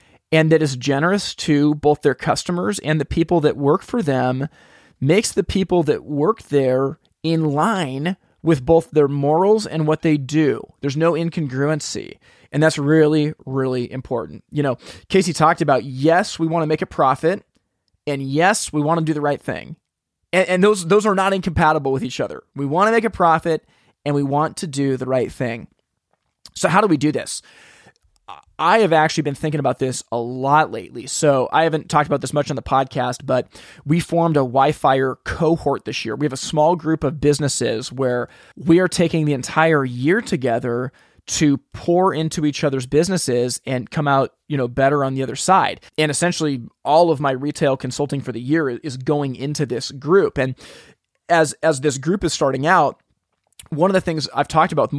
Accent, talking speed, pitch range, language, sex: American, 195 wpm, 135-165 Hz, English, male